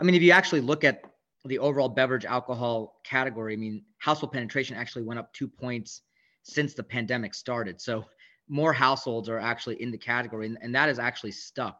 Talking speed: 200 wpm